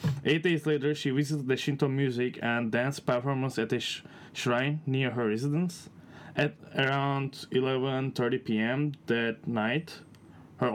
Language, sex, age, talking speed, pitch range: English, male, 20-39, 135 wpm, 115-145 Hz